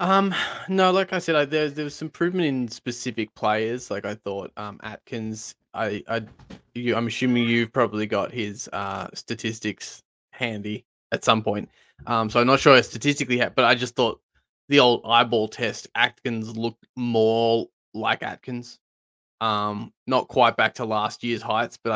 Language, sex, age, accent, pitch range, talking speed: English, male, 20-39, Australian, 110-135 Hz, 170 wpm